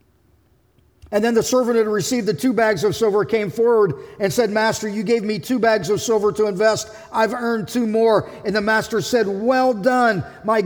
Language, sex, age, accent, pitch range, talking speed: English, male, 50-69, American, 200-250 Hz, 205 wpm